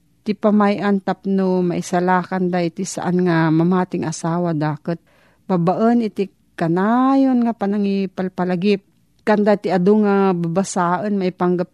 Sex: female